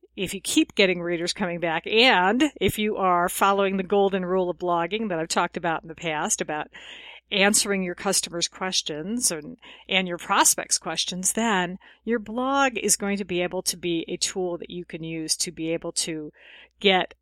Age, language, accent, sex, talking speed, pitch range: 50-69, English, American, female, 190 wpm, 175-245 Hz